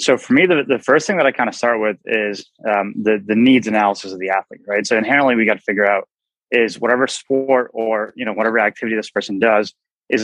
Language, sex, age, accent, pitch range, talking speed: English, male, 20-39, American, 100-115 Hz, 245 wpm